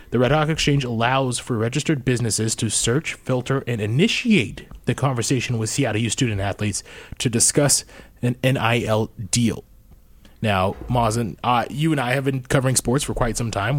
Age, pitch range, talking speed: 20-39, 110-140 Hz, 165 wpm